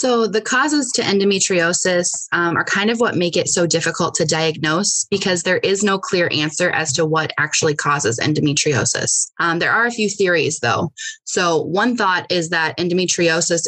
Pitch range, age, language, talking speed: 160-200 Hz, 20-39, English, 180 wpm